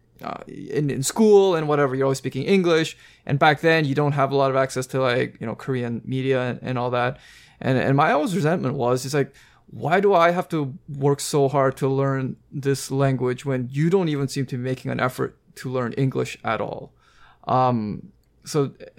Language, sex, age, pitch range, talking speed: English, male, 20-39, 130-150 Hz, 210 wpm